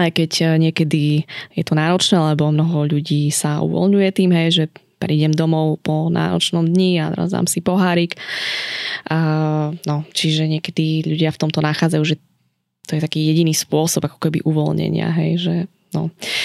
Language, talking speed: Slovak, 155 wpm